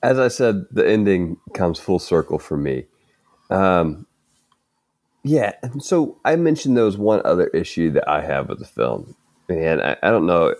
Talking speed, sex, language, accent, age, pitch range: 175 wpm, male, English, American, 30-49, 80-115 Hz